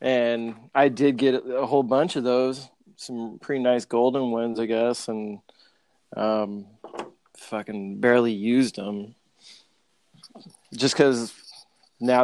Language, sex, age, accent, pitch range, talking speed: English, male, 20-39, American, 115-140 Hz, 125 wpm